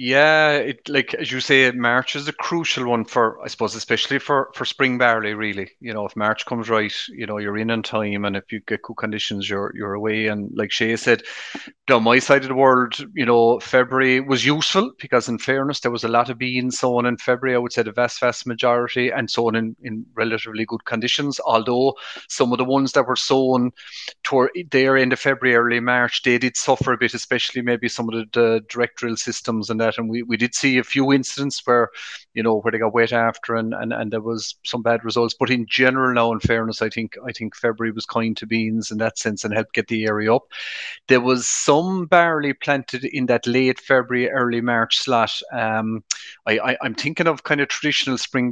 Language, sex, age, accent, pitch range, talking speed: English, male, 30-49, Irish, 115-130 Hz, 230 wpm